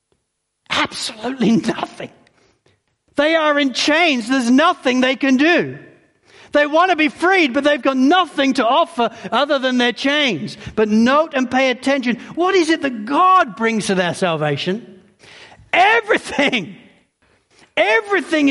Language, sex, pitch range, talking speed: English, male, 190-275 Hz, 135 wpm